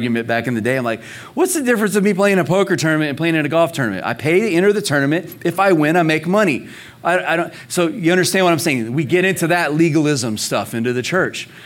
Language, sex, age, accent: English, male, 40-59, American